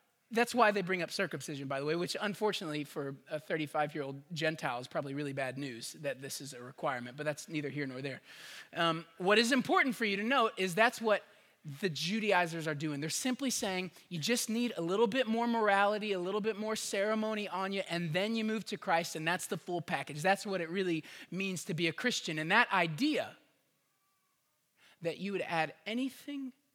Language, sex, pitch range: English, male, 145-205 Hz